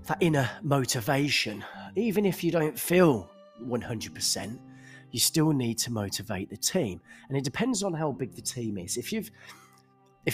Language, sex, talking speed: English, male, 155 wpm